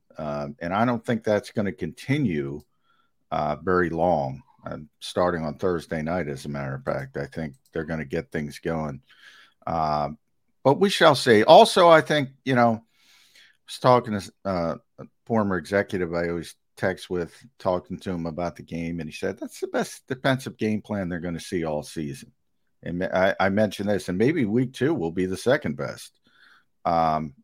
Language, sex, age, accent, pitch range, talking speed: English, male, 50-69, American, 80-115 Hz, 190 wpm